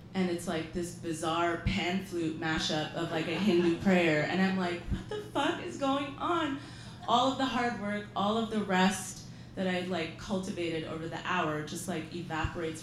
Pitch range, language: 155-195 Hz, English